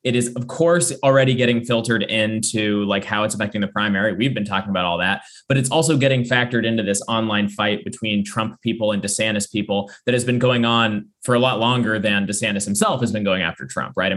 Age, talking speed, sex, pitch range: 20-39, 230 wpm, male, 105-125 Hz